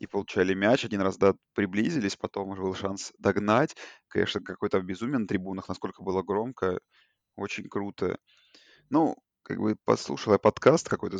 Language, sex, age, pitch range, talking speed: Russian, male, 20-39, 95-105 Hz, 160 wpm